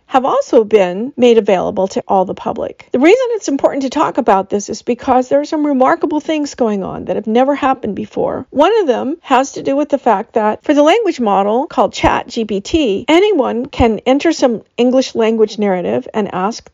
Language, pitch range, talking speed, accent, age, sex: English, 205-275 Hz, 200 wpm, American, 50-69, female